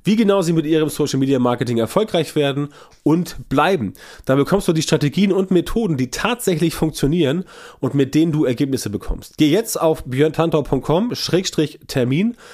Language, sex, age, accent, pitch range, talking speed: German, male, 30-49, German, 130-170 Hz, 155 wpm